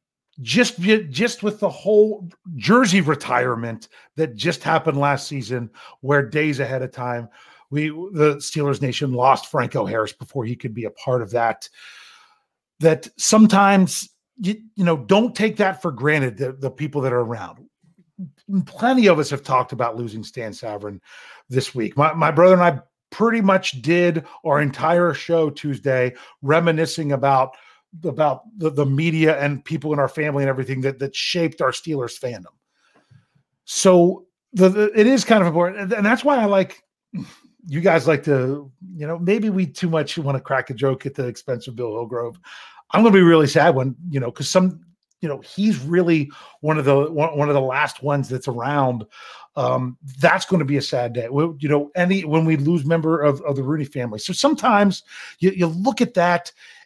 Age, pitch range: 40-59, 135-185 Hz